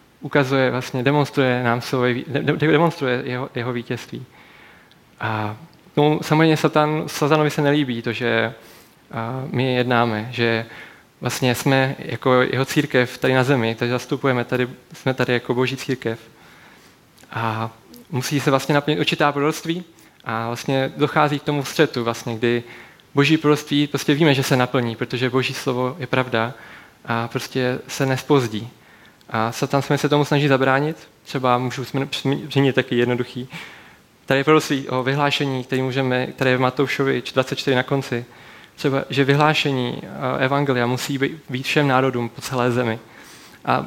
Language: Czech